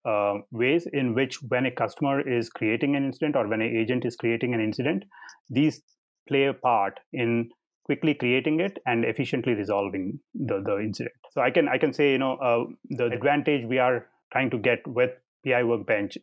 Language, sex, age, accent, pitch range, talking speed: English, male, 30-49, Indian, 110-130 Hz, 190 wpm